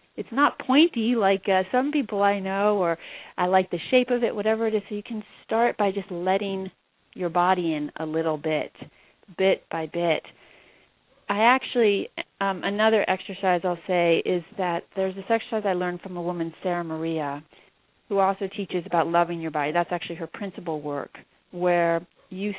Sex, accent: female, American